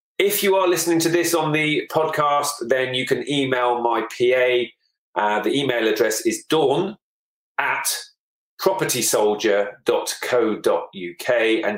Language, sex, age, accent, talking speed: English, male, 40-59, British, 120 wpm